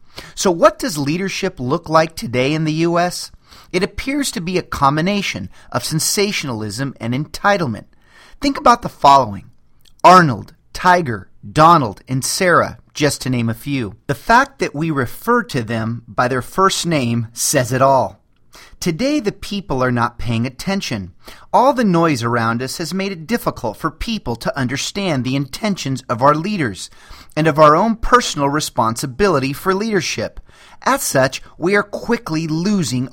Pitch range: 125-190 Hz